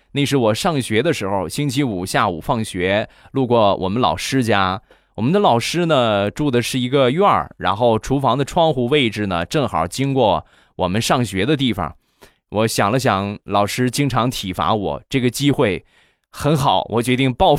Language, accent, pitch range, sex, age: Chinese, native, 105-140 Hz, male, 20-39